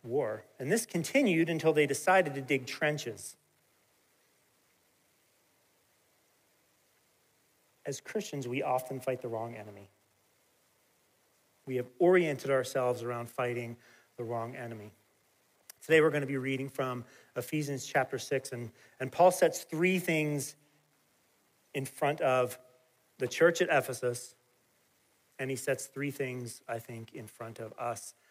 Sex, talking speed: male, 130 wpm